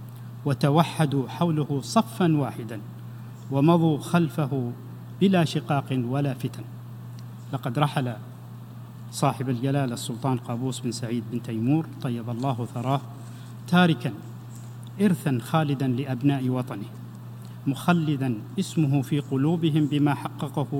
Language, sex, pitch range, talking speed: Arabic, male, 120-150 Hz, 100 wpm